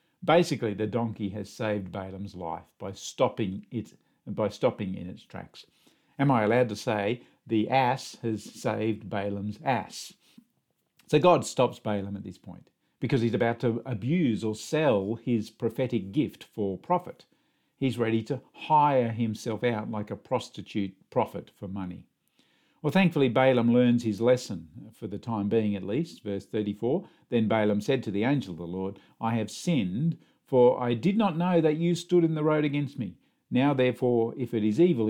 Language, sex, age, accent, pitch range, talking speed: English, male, 50-69, Australian, 105-140 Hz, 175 wpm